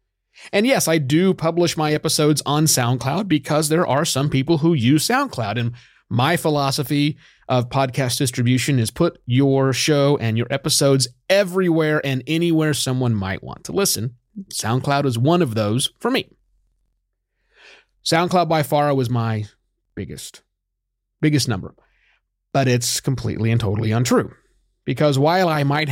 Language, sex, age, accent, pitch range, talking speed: English, male, 30-49, American, 120-170 Hz, 145 wpm